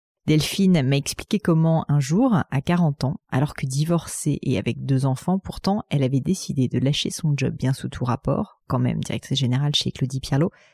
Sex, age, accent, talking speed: female, 30-49, French, 195 wpm